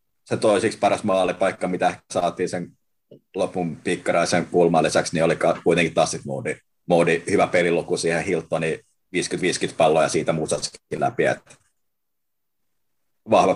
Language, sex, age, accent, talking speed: Finnish, male, 30-49, native, 125 wpm